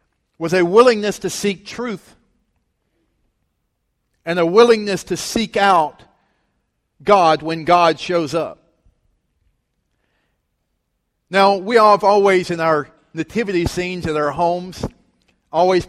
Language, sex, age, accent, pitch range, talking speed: English, male, 50-69, American, 170-205 Hz, 110 wpm